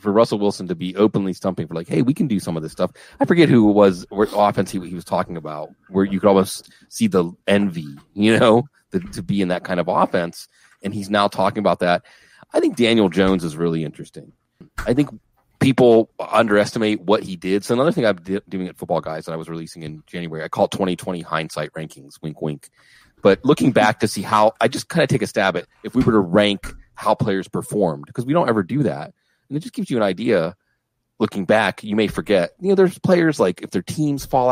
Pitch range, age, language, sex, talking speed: 90-115 Hz, 30-49, English, male, 235 wpm